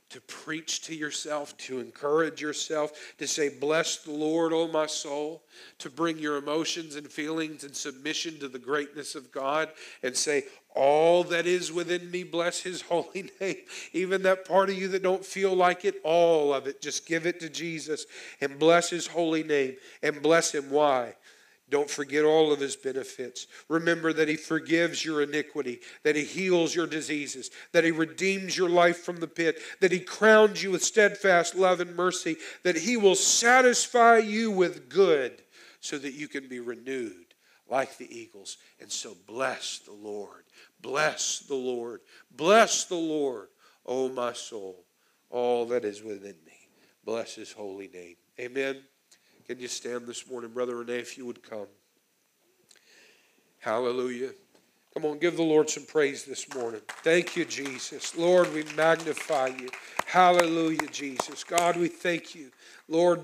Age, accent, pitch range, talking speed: 50-69, American, 140-175 Hz, 165 wpm